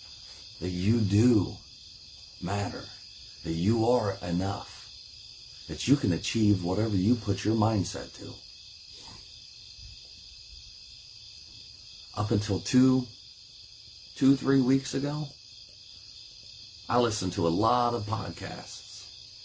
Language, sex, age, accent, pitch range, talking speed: English, male, 40-59, American, 90-110 Hz, 100 wpm